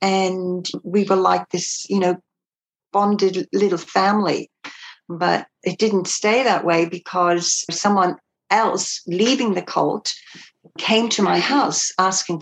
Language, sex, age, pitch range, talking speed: English, female, 60-79, 175-215 Hz, 130 wpm